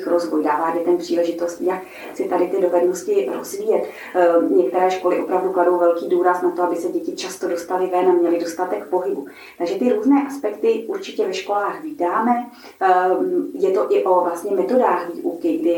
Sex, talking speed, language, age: female, 170 wpm, Czech, 30-49